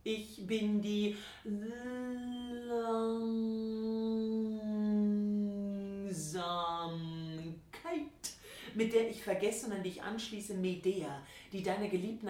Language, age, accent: English, 40-59, German